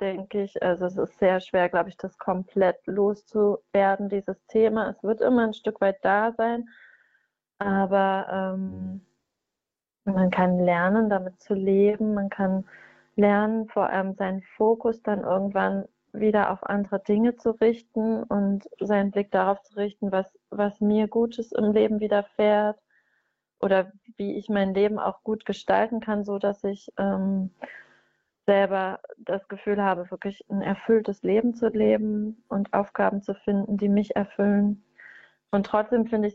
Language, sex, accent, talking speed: German, female, German, 150 wpm